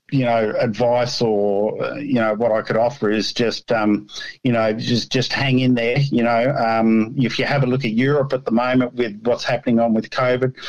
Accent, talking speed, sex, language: Australian, 220 wpm, male, English